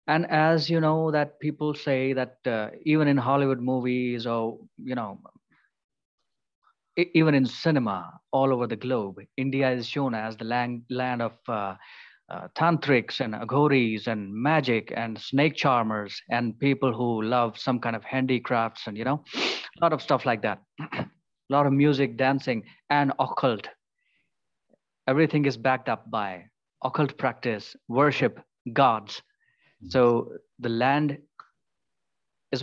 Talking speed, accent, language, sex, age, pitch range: 145 wpm, Indian, English, male, 30-49, 120-155 Hz